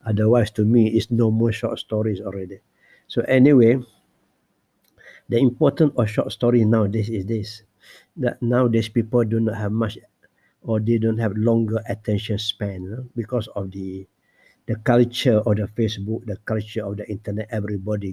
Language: English